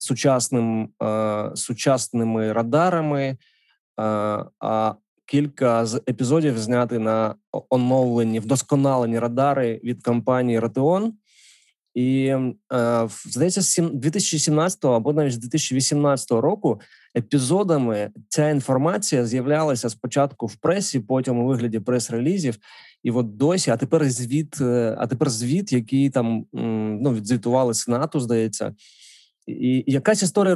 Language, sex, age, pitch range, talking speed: Ukrainian, male, 20-39, 120-150 Hz, 100 wpm